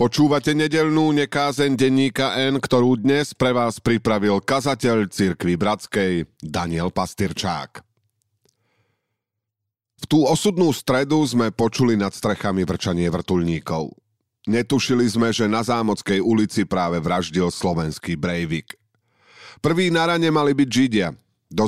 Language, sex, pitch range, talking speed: Slovak, male, 90-120 Hz, 115 wpm